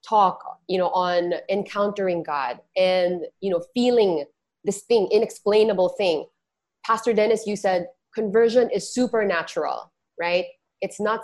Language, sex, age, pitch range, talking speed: English, female, 20-39, 190-260 Hz, 130 wpm